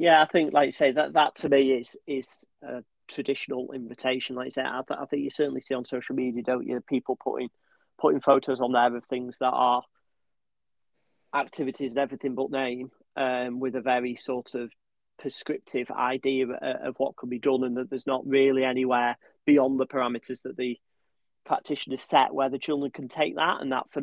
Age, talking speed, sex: 30-49, 200 wpm, male